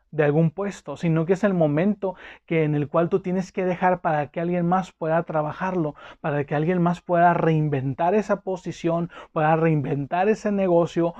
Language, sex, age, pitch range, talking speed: Spanish, male, 30-49, 155-180 Hz, 180 wpm